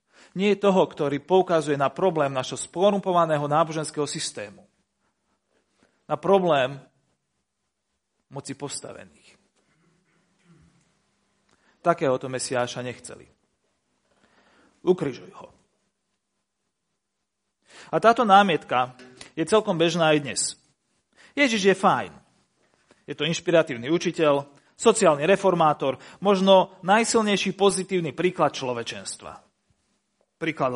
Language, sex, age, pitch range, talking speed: Slovak, male, 40-59, 150-200 Hz, 85 wpm